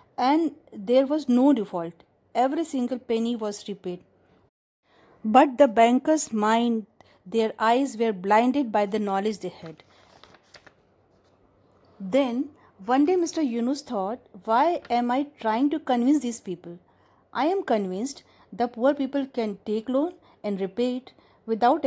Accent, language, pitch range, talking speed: native, Hindi, 215-280 Hz, 135 wpm